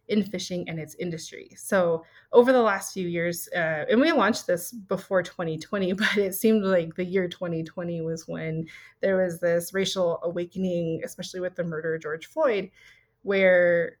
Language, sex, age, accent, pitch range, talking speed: English, female, 20-39, American, 165-200 Hz, 170 wpm